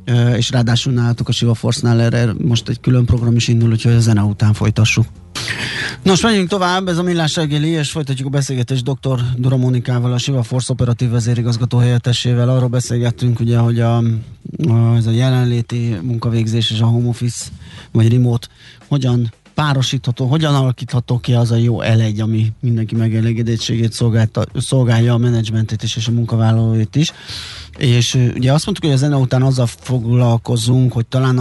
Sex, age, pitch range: male, 20-39, 115-130 Hz